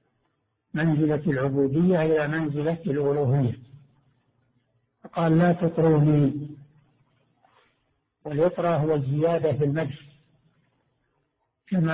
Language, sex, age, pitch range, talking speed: Arabic, male, 60-79, 135-160 Hz, 70 wpm